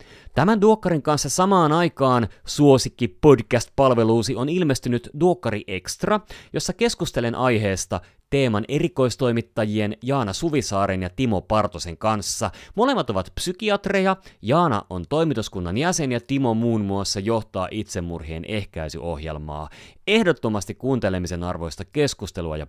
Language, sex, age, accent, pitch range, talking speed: Finnish, male, 30-49, native, 90-135 Hz, 110 wpm